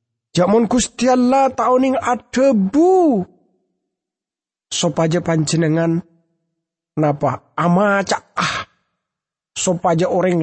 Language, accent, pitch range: English, Indonesian, 120-175 Hz